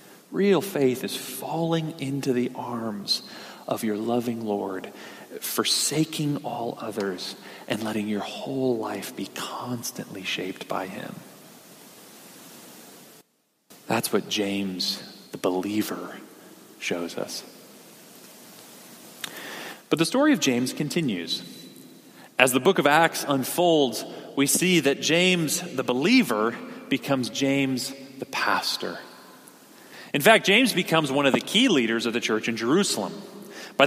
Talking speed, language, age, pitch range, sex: 120 wpm, English, 40-59, 125-170 Hz, male